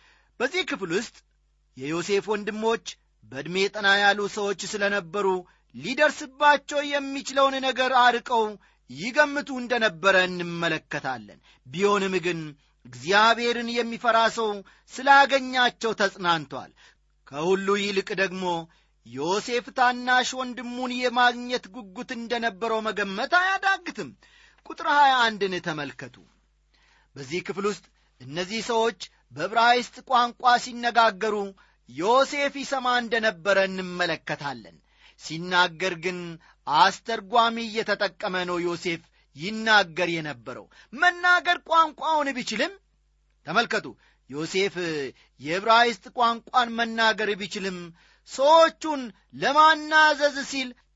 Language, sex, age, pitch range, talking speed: Amharic, male, 40-59, 180-245 Hz, 80 wpm